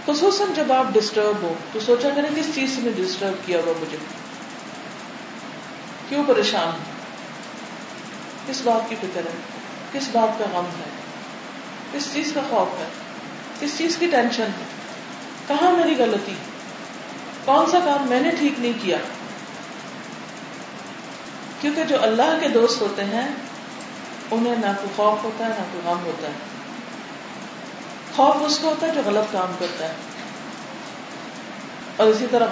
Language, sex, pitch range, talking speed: Urdu, female, 220-295 Hz, 150 wpm